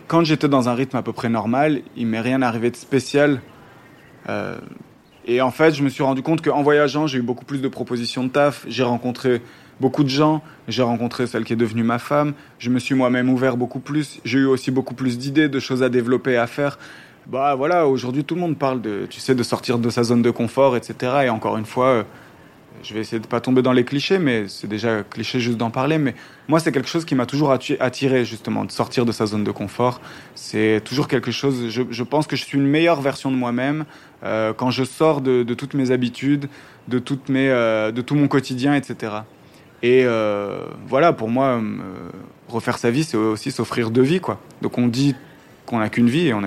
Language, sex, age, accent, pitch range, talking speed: French, male, 30-49, French, 120-140 Hz, 235 wpm